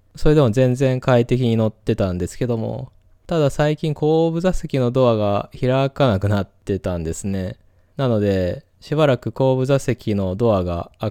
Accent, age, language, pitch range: native, 20-39, Japanese, 95-130 Hz